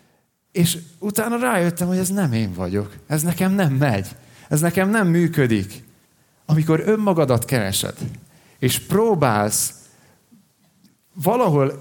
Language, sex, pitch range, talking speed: Hungarian, male, 115-170 Hz, 110 wpm